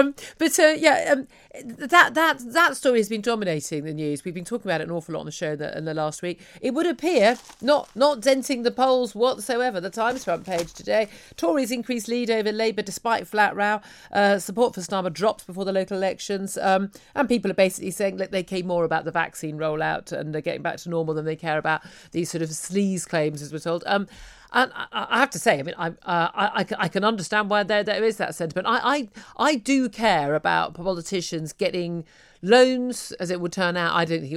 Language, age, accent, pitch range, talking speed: English, 40-59, British, 165-215 Hz, 230 wpm